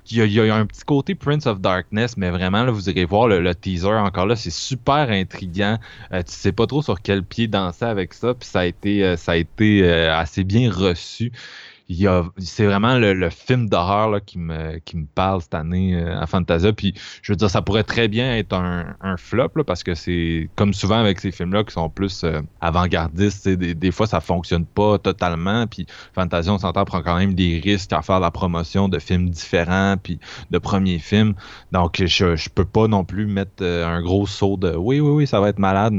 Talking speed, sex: 225 wpm, male